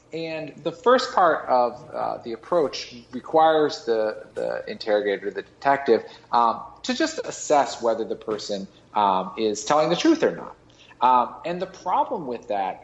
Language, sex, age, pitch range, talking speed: English, male, 40-59, 110-180 Hz, 160 wpm